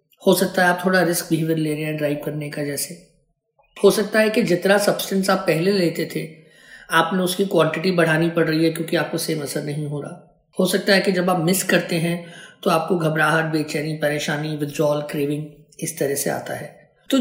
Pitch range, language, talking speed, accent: 160-245 Hz, Hindi, 210 wpm, native